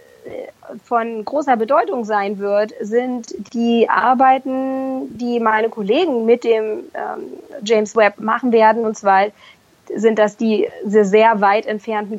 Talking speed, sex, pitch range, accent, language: 125 wpm, female, 205-245 Hz, German, German